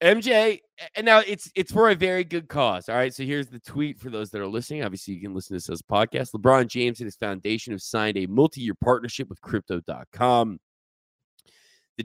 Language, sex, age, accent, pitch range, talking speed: English, male, 20-39, American, 95-125 Hz, 215 wpm